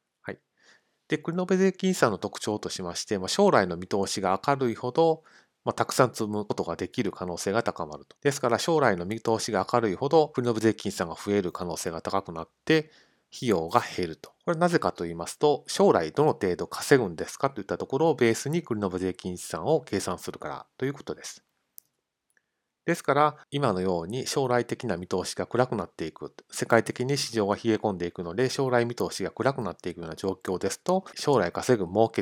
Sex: male